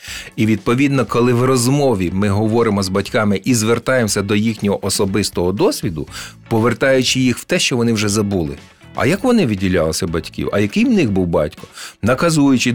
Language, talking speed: Ukrainian, 165 wpm